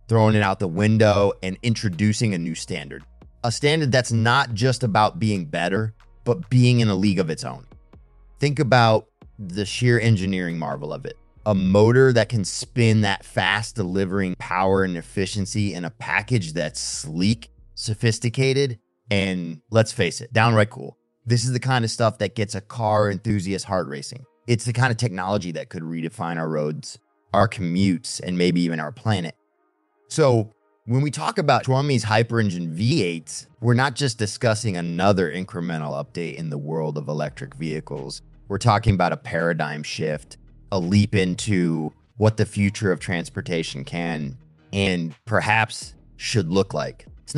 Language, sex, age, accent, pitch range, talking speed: English, male, 30-49, American, 90-115 Hz, 165 wpm